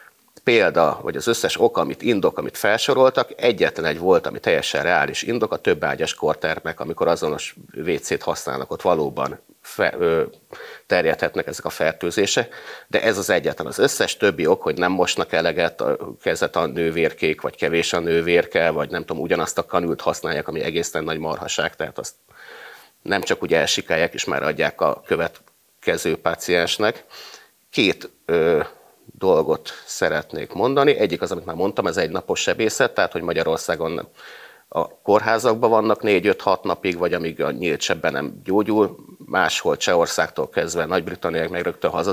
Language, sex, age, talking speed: Hungarian, male, 30-49, 155 wpm